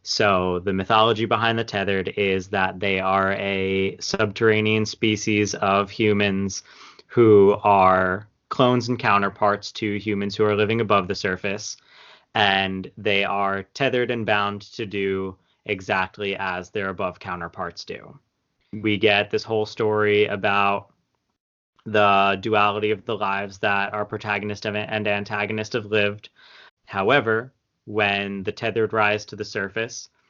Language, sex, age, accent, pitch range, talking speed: English, male, 20-39, American, 100-110 Hz, 135 wpm